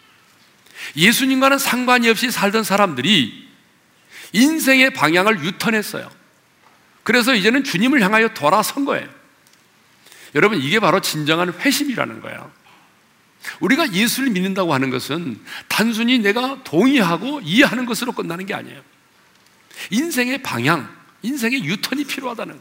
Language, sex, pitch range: Korean, male, 205-275 Hz